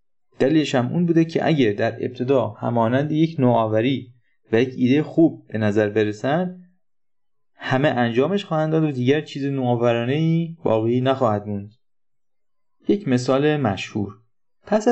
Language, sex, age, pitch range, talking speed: Persian, male, 30-49, 105-150 Hz, 135 wpm